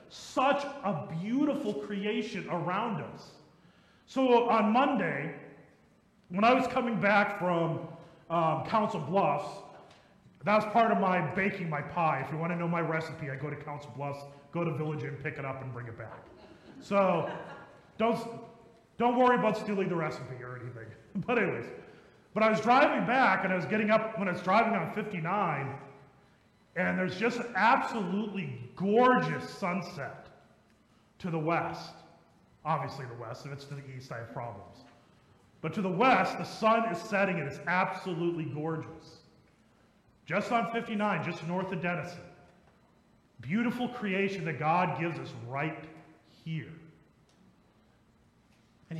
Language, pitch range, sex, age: English, 155-220 Hz, male, 30-49